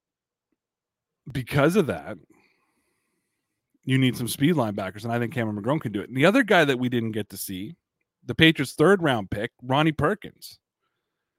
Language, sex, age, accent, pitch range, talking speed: English, male, 30-49, American, 125-160 Hz, 175 wpm